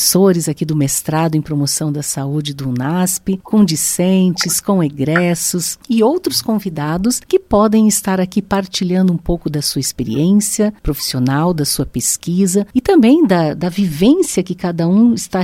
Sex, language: female, Portuguese